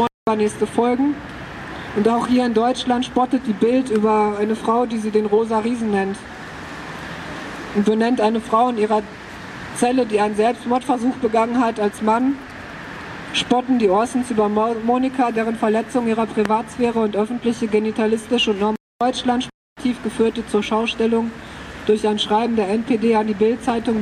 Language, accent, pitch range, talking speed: German, German, 215-245 Hz, 150 wpm